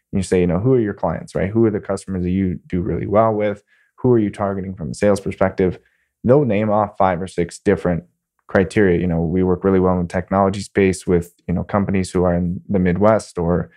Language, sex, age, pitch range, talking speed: English, male, 20-39, 90-105 Hz, 240 wpm